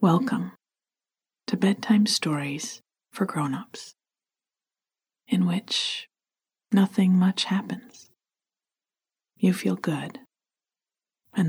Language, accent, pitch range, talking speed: English, American, 155-205 Hz, 85 wpm